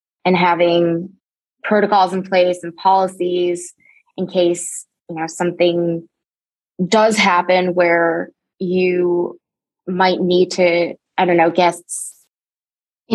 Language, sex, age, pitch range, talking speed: English, female, 20-39, 175-190 Hz, 110 wpm